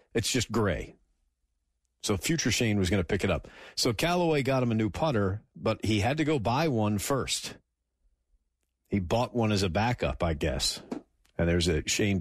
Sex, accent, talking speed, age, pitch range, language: male, American, 190 wpm, 50-69, 90-145 Hz, English